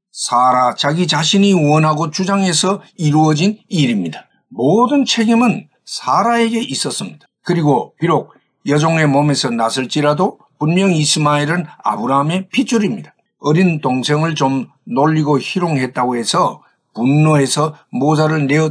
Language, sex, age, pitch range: Korean, male, 50-69, 145-190 Hz